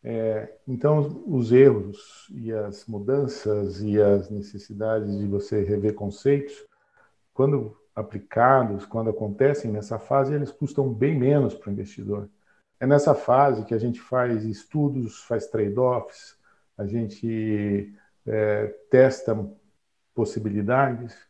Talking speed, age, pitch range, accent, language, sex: 120 wpm, 50-69, 105-130 Hz, Brazilian, Portuguese, male